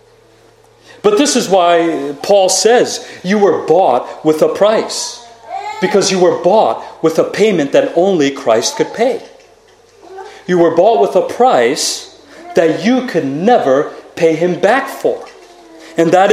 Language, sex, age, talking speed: English, male, 40-59, 145 wpm